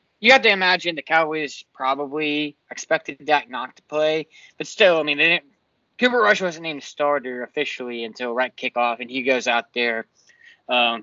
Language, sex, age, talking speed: English, male, 20-39, 170 wpm